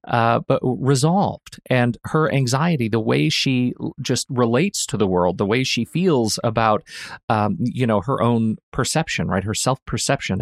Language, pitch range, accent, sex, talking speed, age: English, 120-155 Hz, American, male, 165 wpm, 40-59